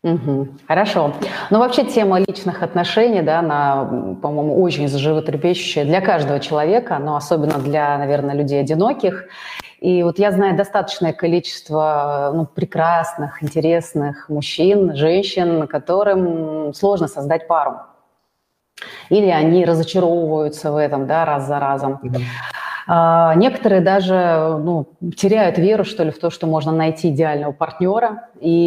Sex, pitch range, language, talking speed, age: female, 150-185 Hz, Russian, 130 wpm, 30-49